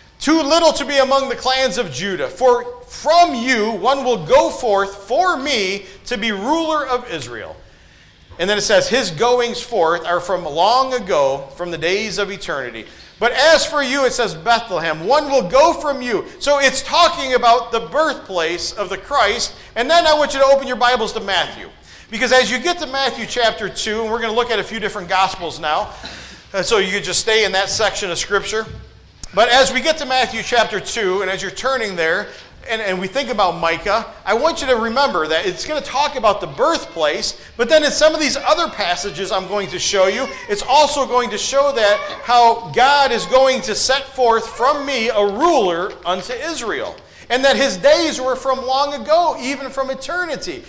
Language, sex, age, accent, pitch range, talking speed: English, male, 40-59, American, 205-275 Hz, 205 wpm